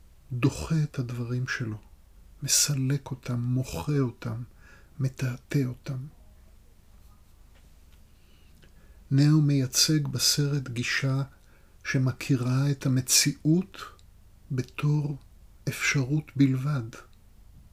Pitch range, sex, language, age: 90-150 Hz, male, Hebrew, 50-69